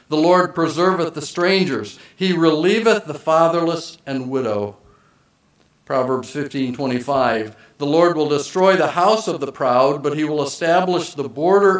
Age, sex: 50-69, male